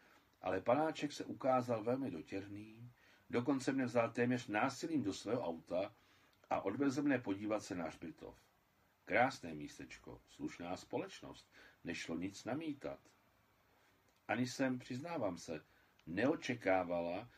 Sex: male